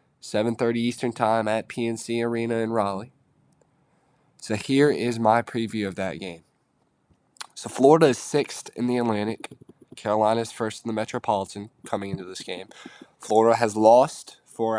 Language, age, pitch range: English, 10-29, 105-125 Hz